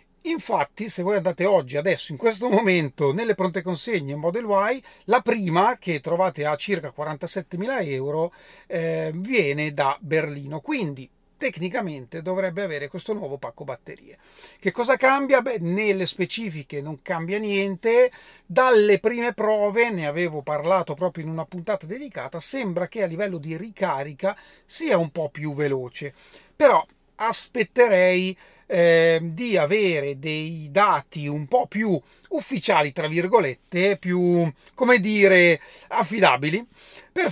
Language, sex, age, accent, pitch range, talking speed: Italian, male, 40-59, native, 160-215 Hz, 135 wpm